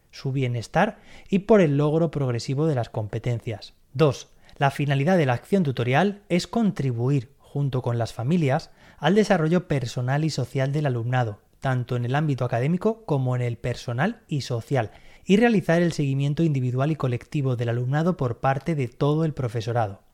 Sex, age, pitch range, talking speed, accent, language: male, 20-39, 130-170 Hz, 165 wpm, Spanish, Spanish